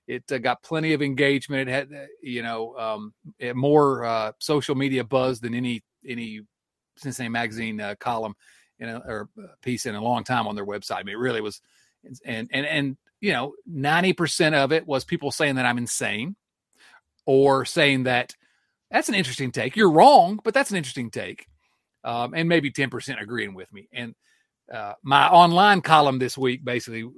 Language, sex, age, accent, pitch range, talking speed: English, male, 40-59, American, 120-160 Hz, 190 wpm